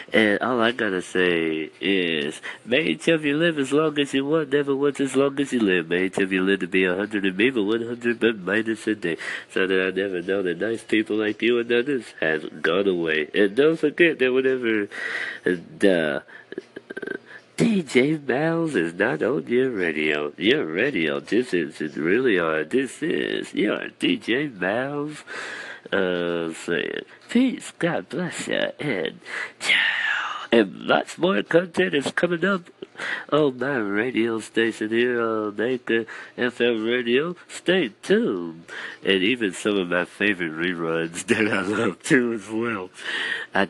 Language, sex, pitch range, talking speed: English, male, 90-140 Hz, 165 wpm